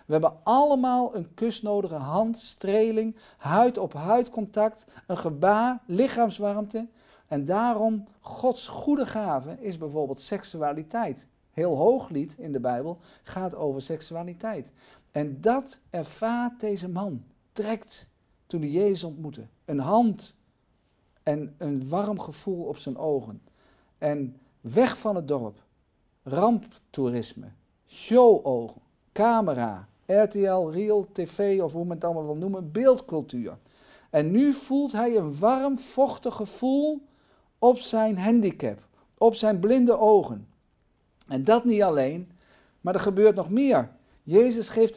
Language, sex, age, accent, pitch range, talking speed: Dutch, male, 50-69, Dutch, 180-235 Hz, 125 wpm